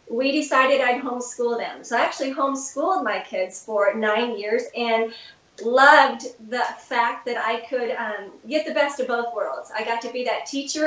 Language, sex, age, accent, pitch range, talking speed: English, female, 40-59, American, 225-270 Hz, 190 wpm